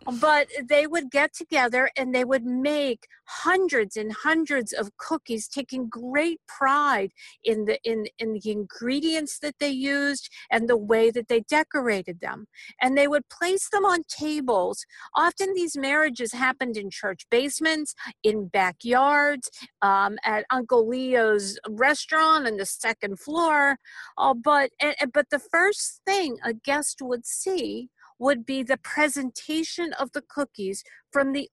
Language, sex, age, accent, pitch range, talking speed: English, female, 50-69, American, 230-295 Hz, 150 wpm